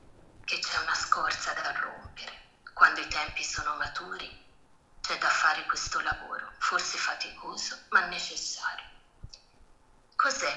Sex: female